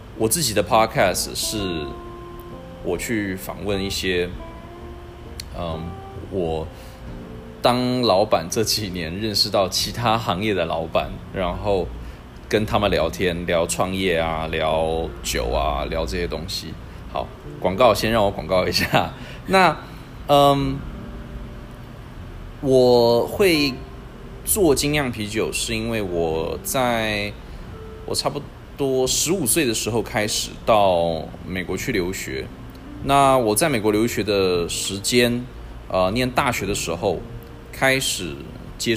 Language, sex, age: Chinese, male, 20-39